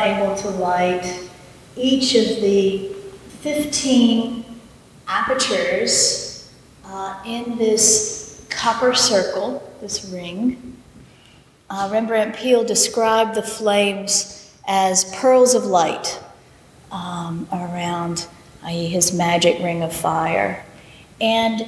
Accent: American